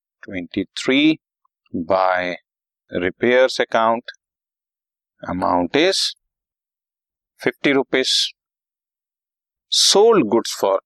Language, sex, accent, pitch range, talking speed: Hindi, male, native, 95-130 Hz, 60 wpm